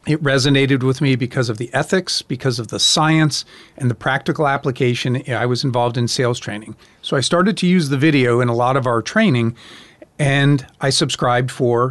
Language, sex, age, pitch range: English, male, 40-59, 125-150 Hz